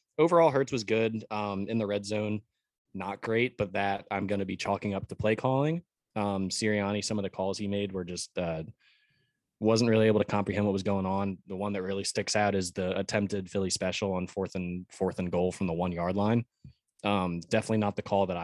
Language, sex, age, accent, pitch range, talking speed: English, male, 20-39, American, 95-110 Hz, 230 wpm